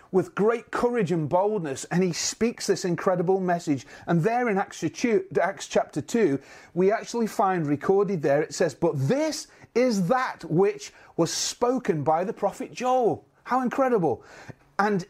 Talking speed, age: 150 wpm, 30-49